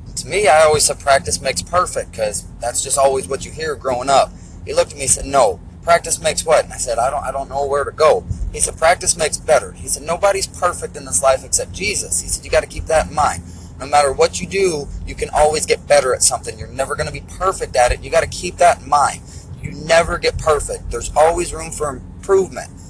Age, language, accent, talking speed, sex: 30-49, English, American, 245 wpm, male